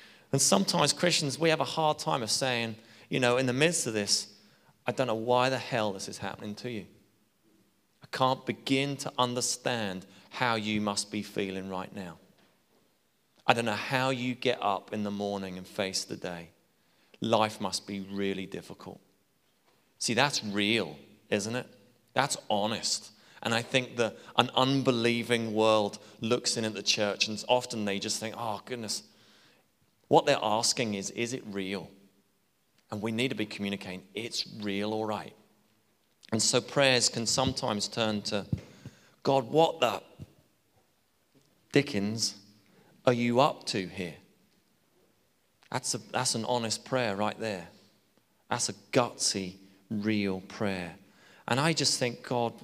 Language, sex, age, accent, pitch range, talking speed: English, male, 30-49, British, 100-125 Hz, 155 wpm